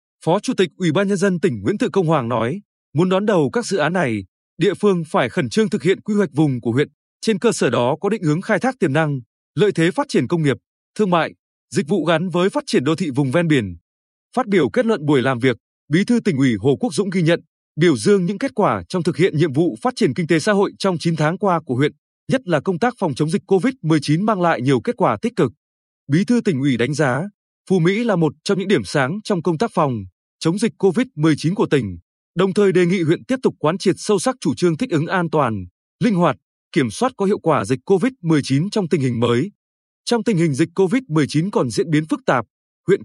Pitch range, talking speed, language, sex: 150-205 Hz, 250 wpm, Vietnamese, male